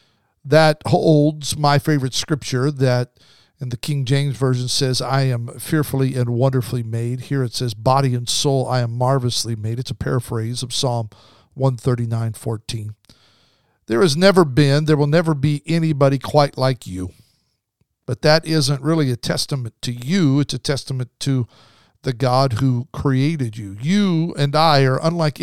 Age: 50-69